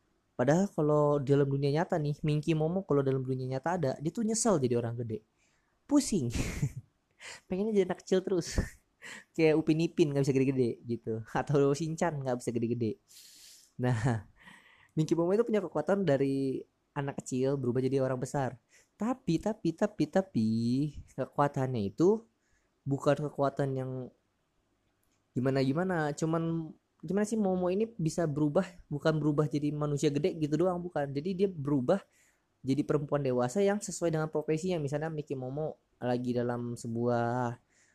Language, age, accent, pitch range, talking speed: Indonesian, 20-39, native, 130-170 Hz, 145 wpm